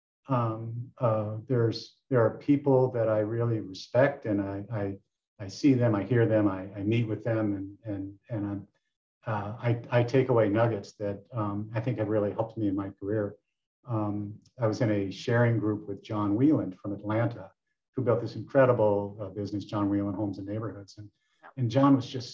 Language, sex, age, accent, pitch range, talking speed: English, male, 50-69, American, 105-125 Hz, 195 wpm